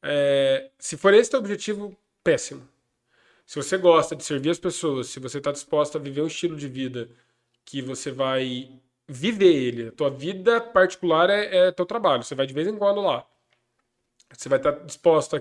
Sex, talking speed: male, 190 wpm